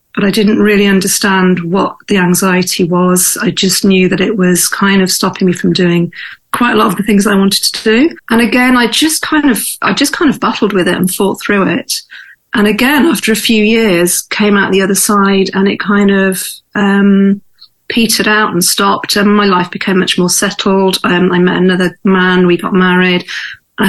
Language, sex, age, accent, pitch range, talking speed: English, female, 40-59, British, 180-205 Hz, 210 wpm